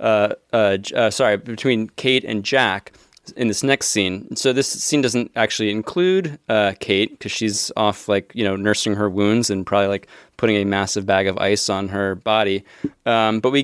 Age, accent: 20-39, American